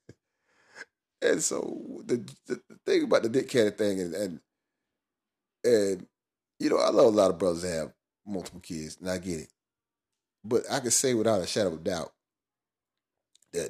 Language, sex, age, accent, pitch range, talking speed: English, male, 30-49, American, 85-115 Hz, 175 wpm